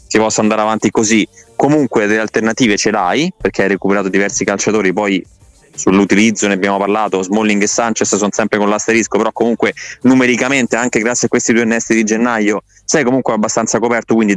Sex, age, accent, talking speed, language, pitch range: male, 20-39, native, 180 wpm, Italian, 100-120 Hz